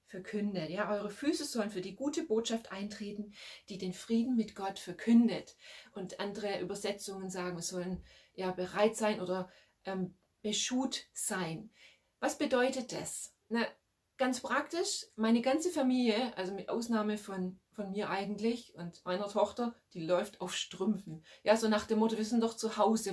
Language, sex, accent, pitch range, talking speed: German, female, German, 195-240 Hz, 160 wpm